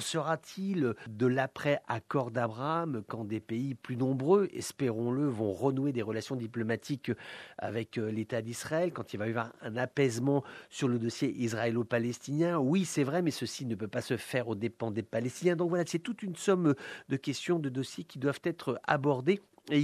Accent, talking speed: French, 175 wpm